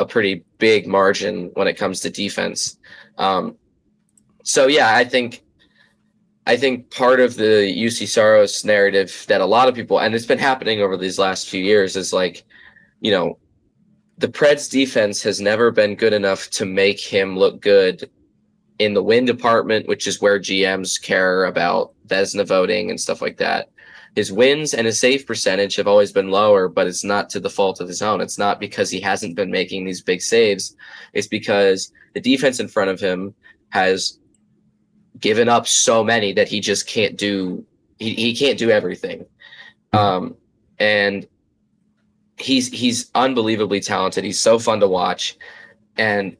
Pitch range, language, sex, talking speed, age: 100-150 Hz, English, male, 170 wpm, 20-39